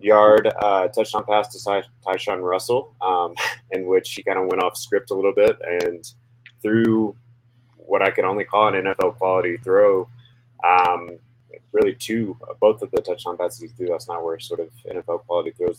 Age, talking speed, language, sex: 20-39, 185 wpm, English, male